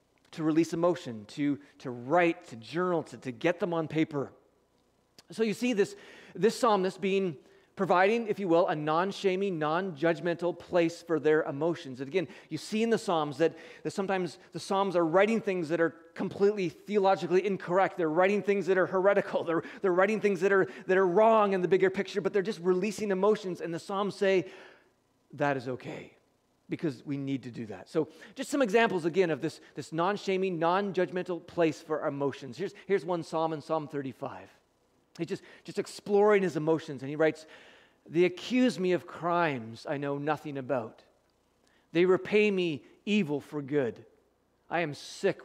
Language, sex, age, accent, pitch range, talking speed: English, male, 30-49, American, 155-190 Hz, 180 wpm